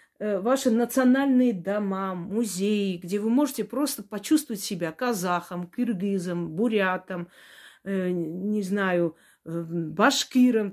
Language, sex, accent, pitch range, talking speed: Russian, female, native, 185-255 Hz, 95 wpm